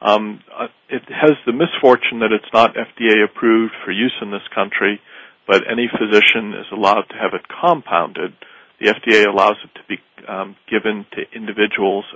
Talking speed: 170 wpm